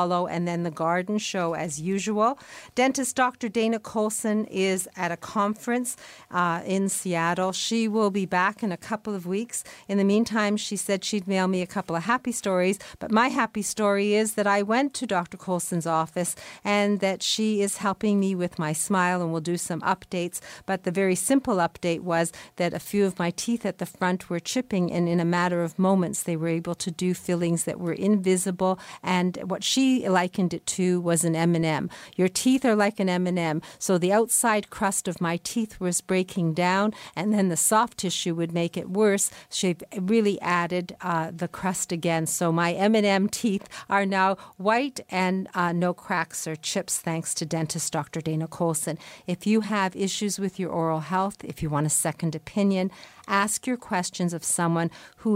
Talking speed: 195 wpm